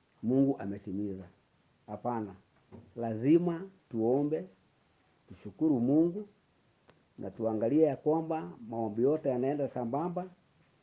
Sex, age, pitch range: male, 50-69, 110-155 Hz